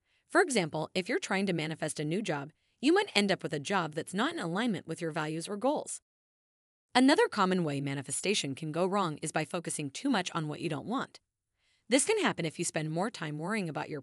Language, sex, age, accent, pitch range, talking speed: English, female, 30-49, American, 155-230 Hz, 230 wpm